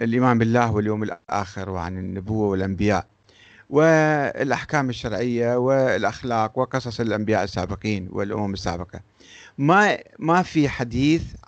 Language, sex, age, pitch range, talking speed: Arabic, male, 50-69, 105-150 Hz, 100 wpm